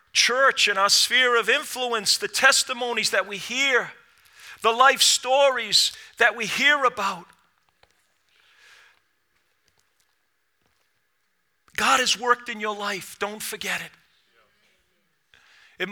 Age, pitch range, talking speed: 40-59, 180-215 Hz, 105 wpm